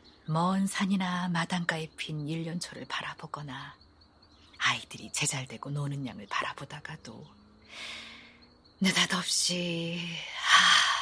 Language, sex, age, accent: Korean, female, 40-59, native